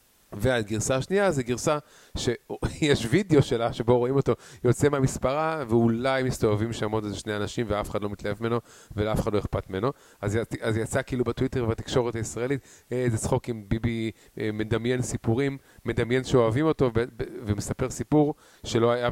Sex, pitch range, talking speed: male, 110-135 Hz, 165 wpm